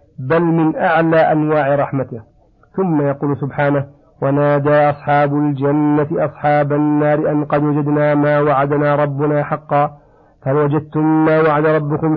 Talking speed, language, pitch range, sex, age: 125 wpm, Arabic, 145-160 Hz, male, 50-69